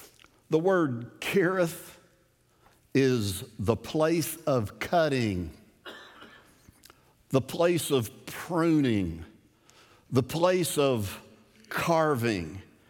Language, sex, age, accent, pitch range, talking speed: English, male, 60-79, American, 115-165 Hz, 75 wpm